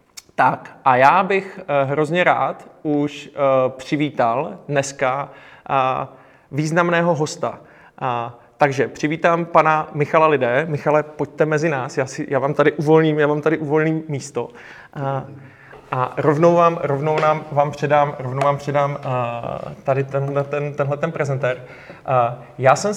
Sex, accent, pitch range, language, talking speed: male, native, 135-155 Hz, Czech, 125 wpm